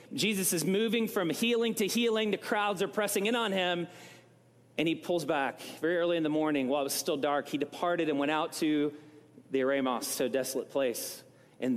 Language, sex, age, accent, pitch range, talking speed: English, male, 30-49, American, 150-205 Hz, 205 wpm